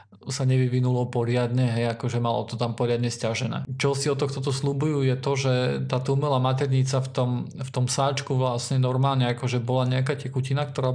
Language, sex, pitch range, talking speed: Slovak, male, 120-135 Hz, 190 wpm